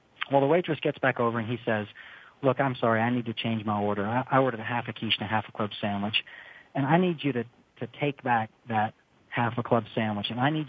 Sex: male